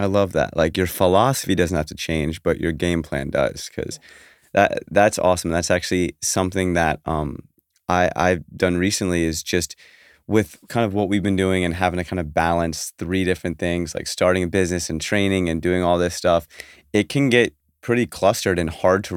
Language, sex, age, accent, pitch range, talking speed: English, male, 20-39, American, 80-95 Hz, 205 wpm